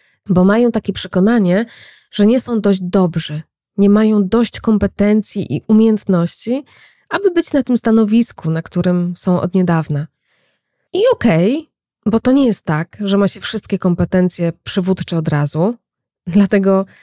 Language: Polish